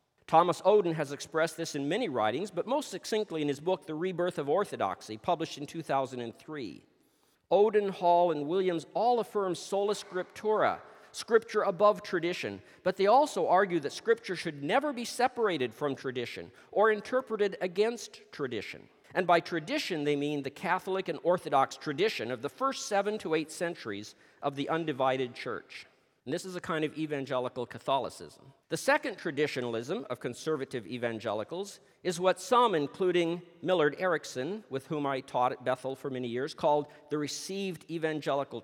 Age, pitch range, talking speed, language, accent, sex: 50-69, 145-195 Hz, 160 wpm, English, American, male